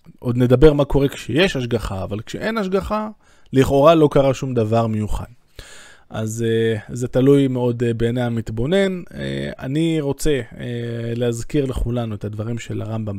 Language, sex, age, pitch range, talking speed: Hebrew, male, 20-39, 115-140 Hz, 130 wpm